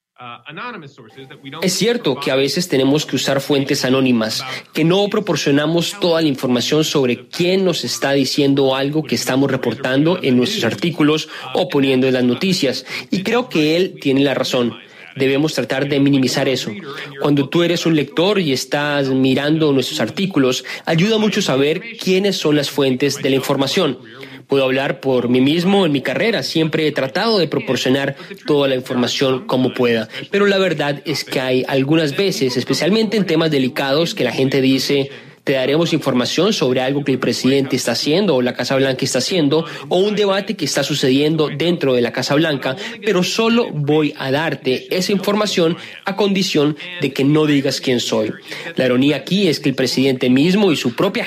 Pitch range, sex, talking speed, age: 130-170 Hz, male, 180 wpm, 30-49